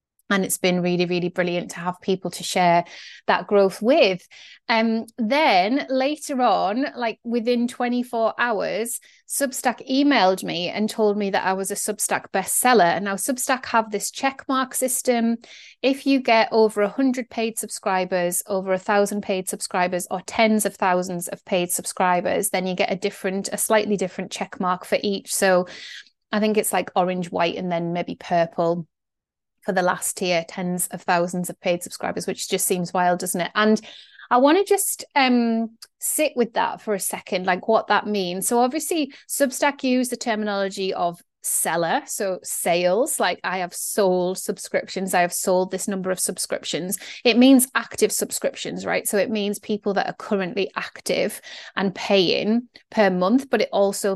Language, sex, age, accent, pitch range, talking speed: English, female, 30-49, British, 185-230 Hz, 170 wpm